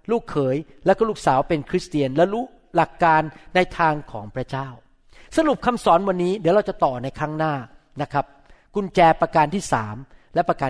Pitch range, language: 160-230 Hz, Thai